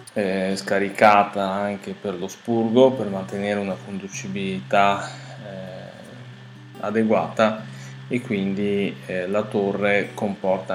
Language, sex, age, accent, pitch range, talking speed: Italian, male, 20-39, native, 100-120 Hz, 95 wpm